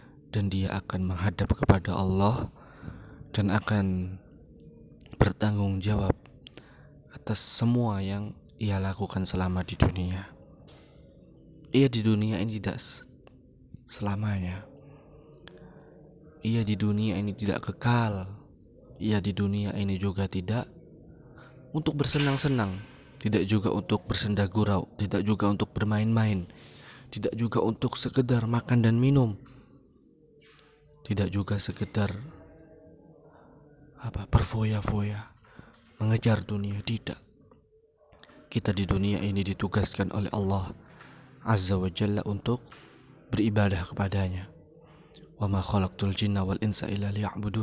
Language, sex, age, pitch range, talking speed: Indonesian, male, 20-39, 100-120 Hz, 100 wpm